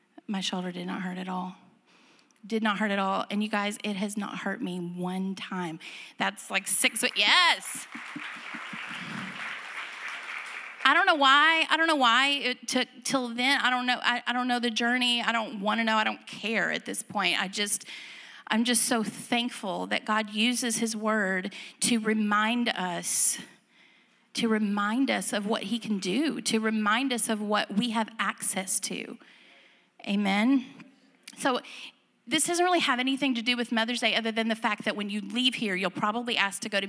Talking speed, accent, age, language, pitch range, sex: 190 wpm, American, 30-49, English, 205-255 Hz, female